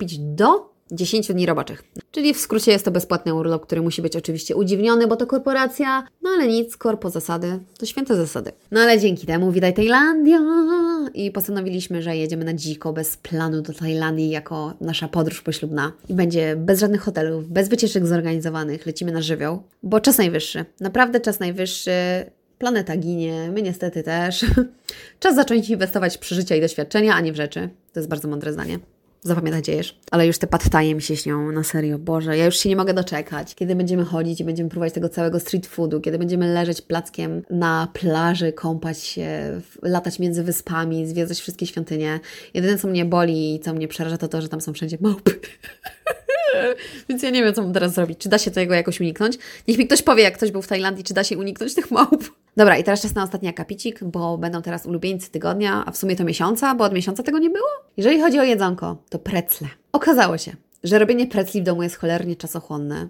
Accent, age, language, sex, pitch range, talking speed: native, 20-39, Polish, female, 165-210 Hz, 200 wpm